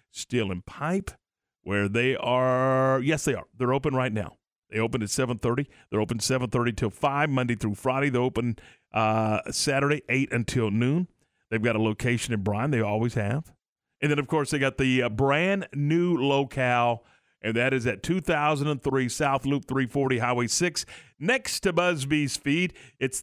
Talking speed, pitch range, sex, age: 175 wpm, 120-155 Hz, male, 40-59